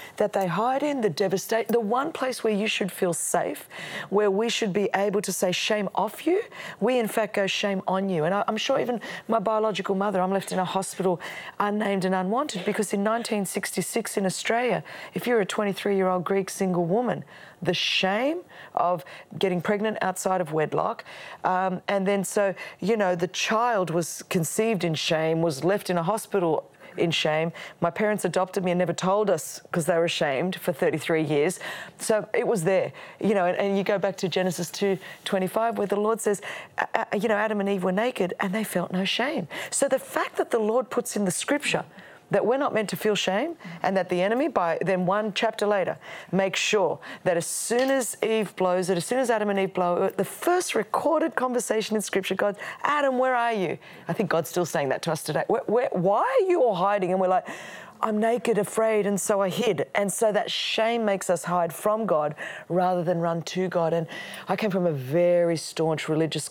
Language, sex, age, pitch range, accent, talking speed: English, female, 40-59, 180-220 Hz, Australian, 210 wpm